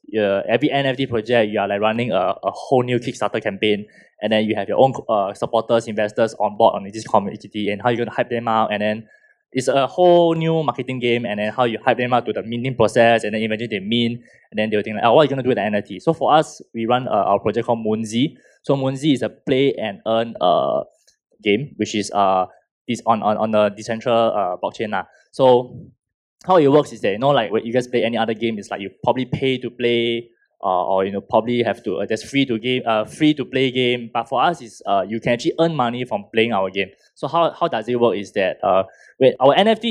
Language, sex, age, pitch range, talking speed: English, male, 20-39, 110-130 Hz, 260 wpm